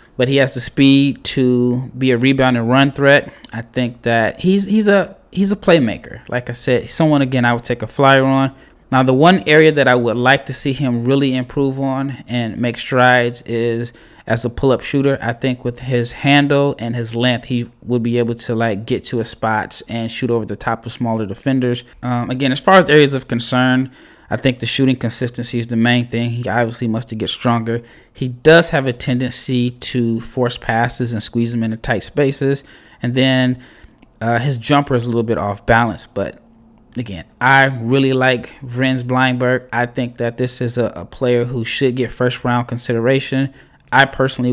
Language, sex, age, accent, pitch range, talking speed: English, male, 20-39, American, 120-135 Hz, 200 wpm